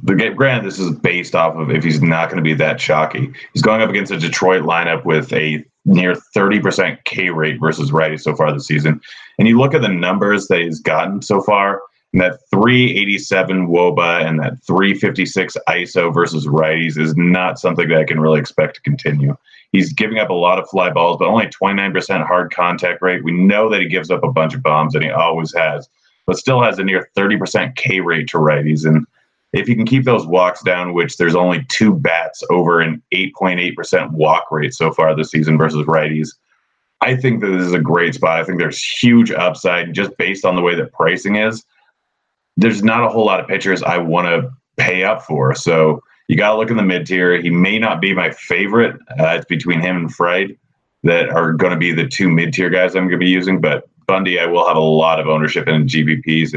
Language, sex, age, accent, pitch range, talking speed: English, male, 30-49, American, 80-95 Hz, 220 wpm